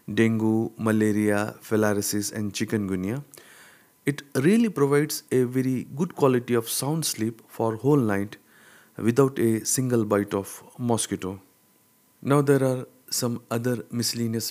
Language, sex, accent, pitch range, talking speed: English, male, Indian, 105-130 Hz, 125 wpm